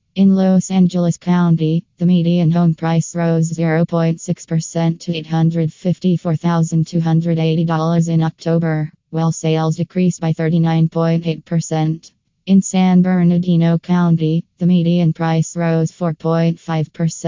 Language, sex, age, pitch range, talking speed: English, female, 20-39, 160-175 Hz, 110 wpm